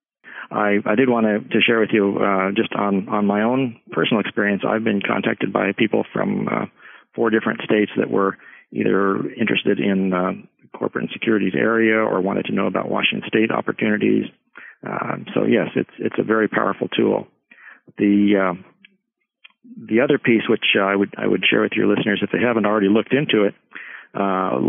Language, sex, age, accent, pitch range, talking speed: English, male, 50-69, American, 100-110 Hz, 190 wpm